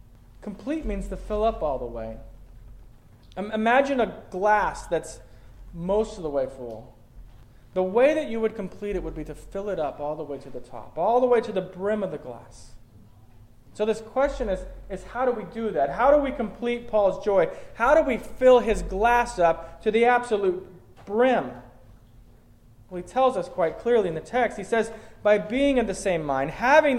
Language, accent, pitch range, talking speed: English, American, 140-230 Hz, 200 wpm